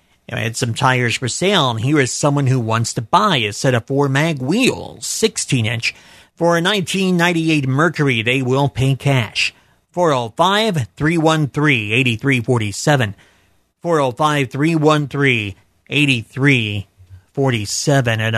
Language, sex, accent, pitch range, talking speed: English, male, American, 115-150 Hz, 100 wpm